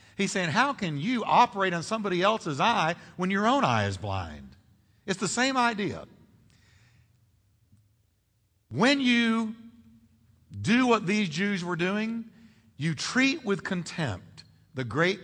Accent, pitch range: American, 110-175 Hz